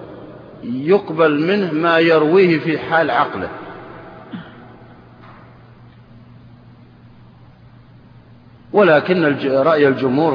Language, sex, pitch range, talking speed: Arabic, male, 140-180 Hz, 60 wpm